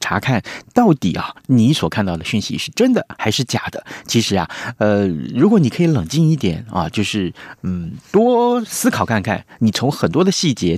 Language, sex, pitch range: Chinese, male, 95-160 Hz